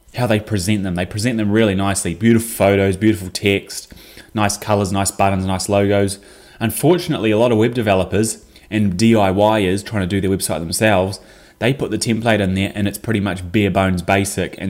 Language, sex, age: English, male, 20-39